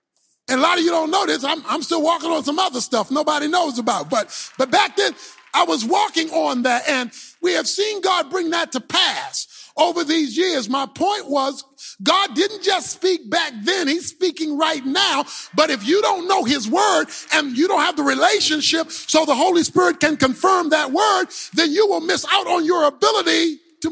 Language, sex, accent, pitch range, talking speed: English, male, American, 285-360 Hz, 210 wpm